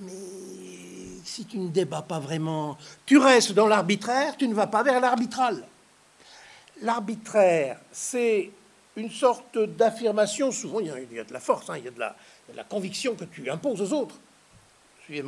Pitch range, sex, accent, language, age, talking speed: 145-220 Hz, male, French, French, 60-79, 170 wpm